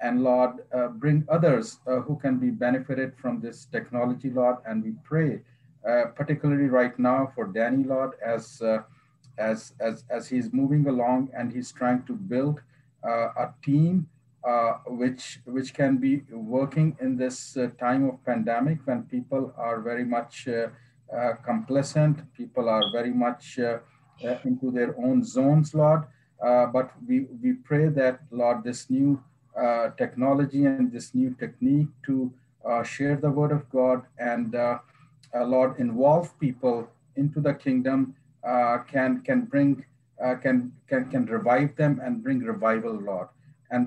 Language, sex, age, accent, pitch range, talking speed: English, male, 40-59, Indian, 125-145 Hz, 160 wpm